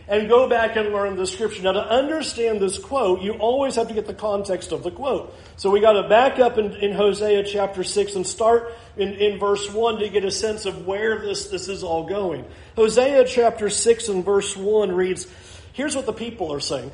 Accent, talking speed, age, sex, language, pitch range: American, 225 wpm, 40-59, male, English, 200-255 Hz